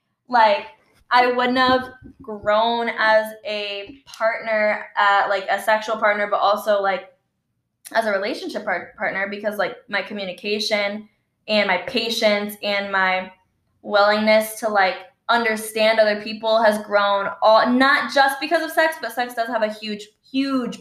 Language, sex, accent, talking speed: English, female, American, 140 wpm